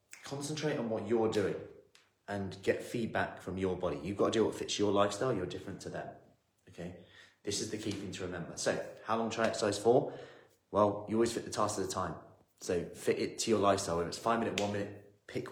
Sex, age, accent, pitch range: male, 30-49, British, 95-130 Hz